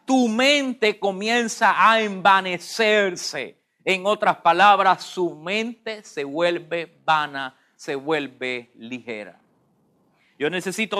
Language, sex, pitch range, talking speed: English, male, 155-200 Hz, 100 wpm